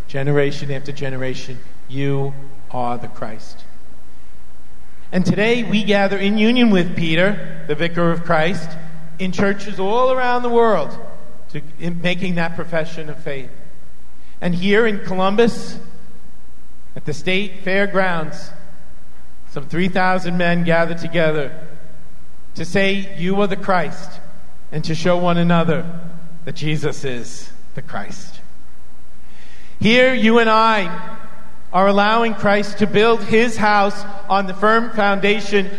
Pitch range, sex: 155-210 Hz, male